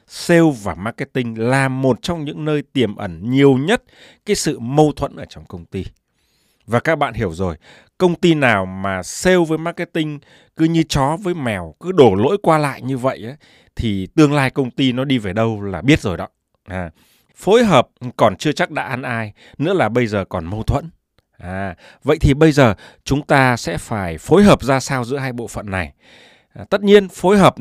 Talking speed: 200 wpm